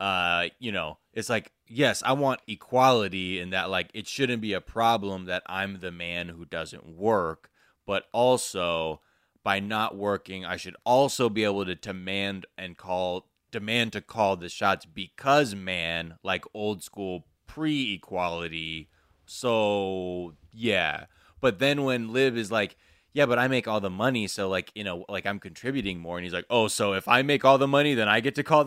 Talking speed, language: 185 wpm, English